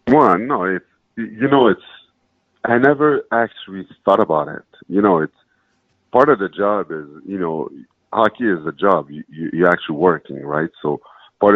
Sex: male